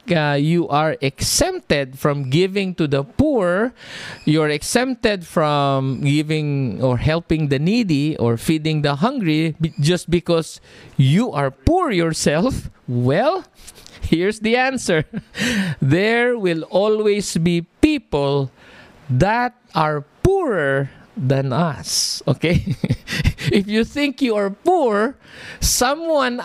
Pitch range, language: 150-235 Hz, English